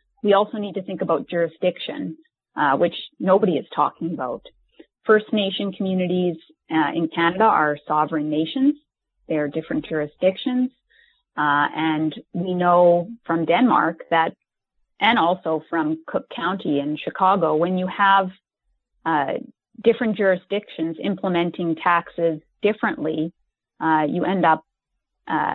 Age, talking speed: 30-49, 125 wpm